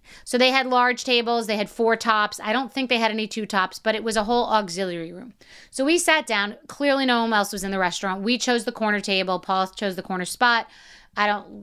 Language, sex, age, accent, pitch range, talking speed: English, female, 30-49, American, 205-265 Hz, 250 wpm